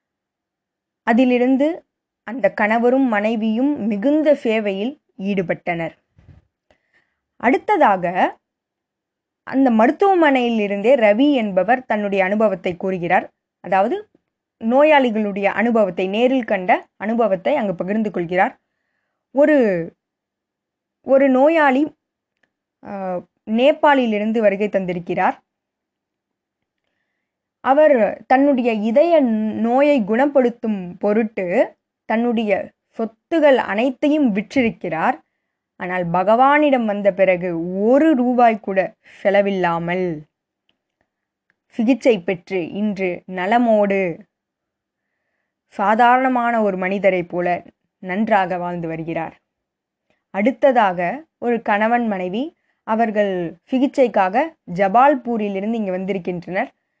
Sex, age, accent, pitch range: female, 20-39, native, 195-265 Hz